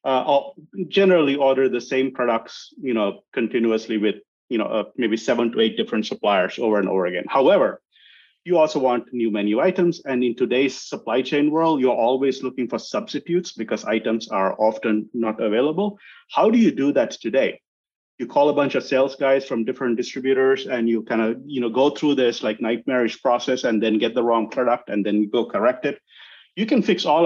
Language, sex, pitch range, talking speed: English, male, 115-145 Hz, 200 wpm